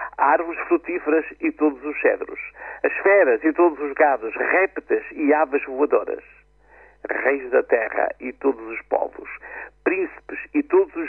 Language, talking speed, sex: Portuguese, 145 wpm, male